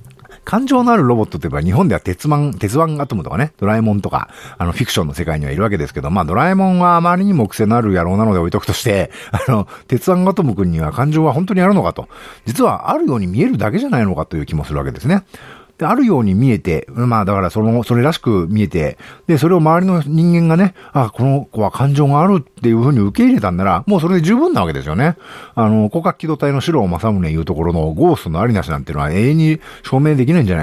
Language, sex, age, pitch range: Japanese, male, 50-69, 85-145 Hz